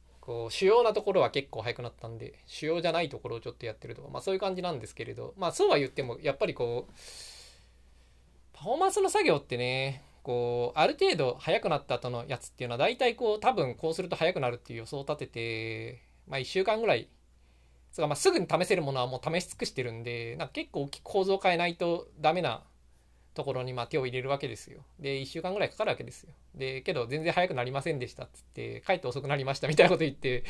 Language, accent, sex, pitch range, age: Japanese, native, male, 115-165 Hz, 20-39